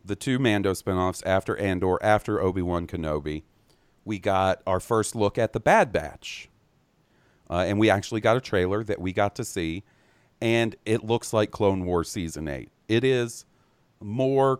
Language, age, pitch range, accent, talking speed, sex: English, 40-59, 90-115 Hz, American, 170 wpm, male